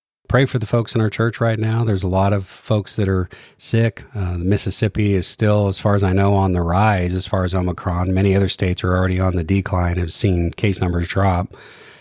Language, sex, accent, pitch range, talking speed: English, male, American, 90-105 Hz, 230 wpm